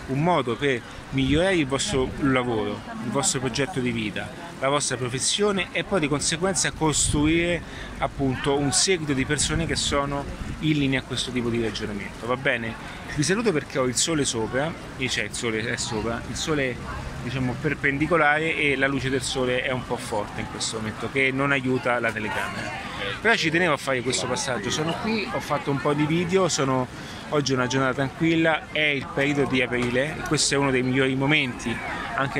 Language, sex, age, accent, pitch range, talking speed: Italian, male, 30-49, native, 120-145 Hz, 195 wpm